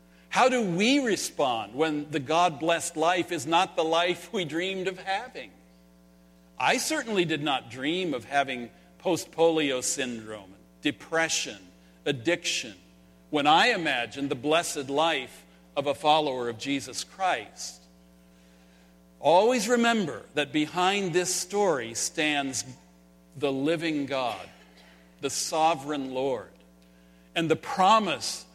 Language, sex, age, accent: English, male, 50-69, American